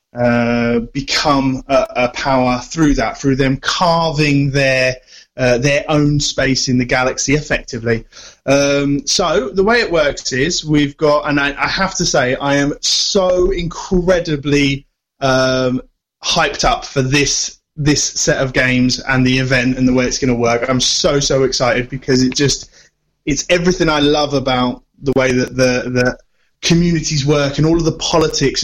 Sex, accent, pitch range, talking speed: male, British, 130-150 Hz, 170 wpm